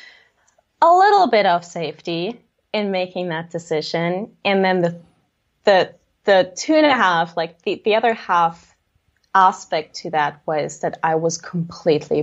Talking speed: 150 wpm